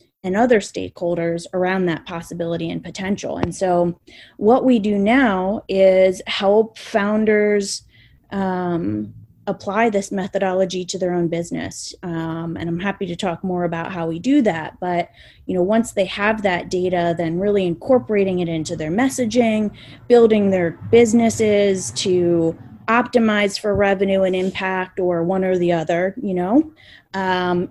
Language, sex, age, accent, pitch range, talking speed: English, female, 20-39, American, 170-205 Hz, 150 wpm